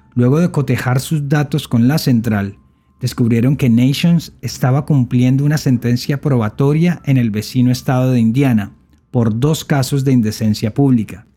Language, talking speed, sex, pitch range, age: Spanish, 150 wpm, male, 110-145 Hz, 40-59